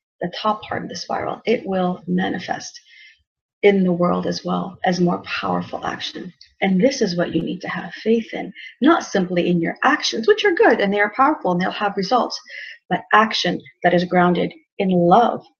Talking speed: 195 wpm